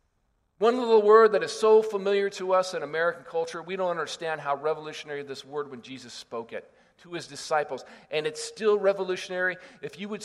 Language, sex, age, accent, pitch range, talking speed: English, male, 50-69, American, 175-225 Hz, 195 wpm